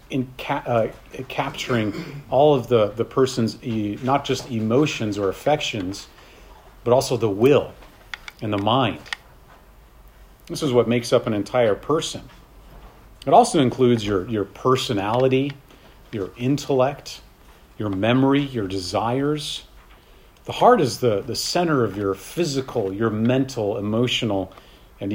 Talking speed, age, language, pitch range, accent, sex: 135 wpm, 40-59, English, 100-130 Hz, American, male